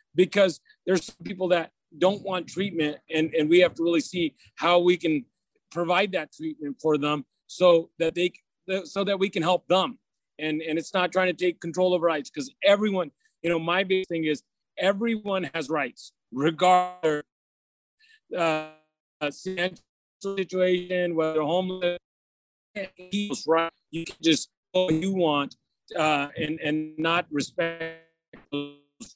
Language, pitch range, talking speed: English, 155-185 Hz, 155 wpm